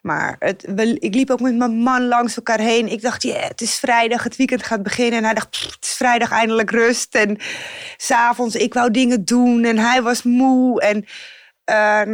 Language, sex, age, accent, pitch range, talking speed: Dutch, female, 20-39, Dutch, 210-255 Hz, 205 wpm